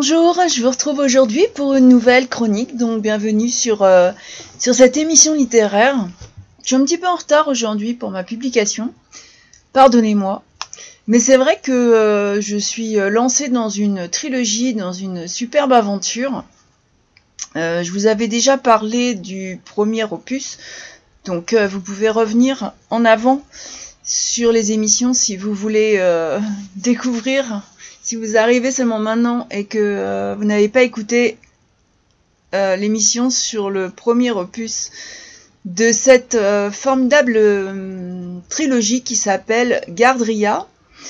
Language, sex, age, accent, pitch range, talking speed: French, female, 30-49, French, 210-260 Hz, 135 wpm